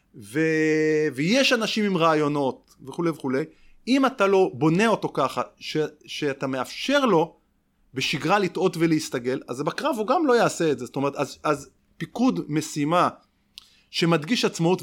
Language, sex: Hebrew, male